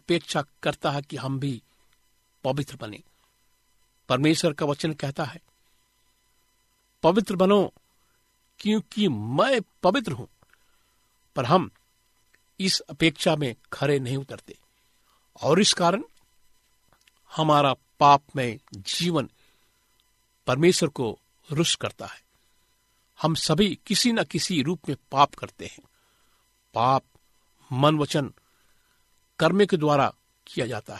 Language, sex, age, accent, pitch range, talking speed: Hindi, male, 50-69, native, 125-165 Hz, 110 wpm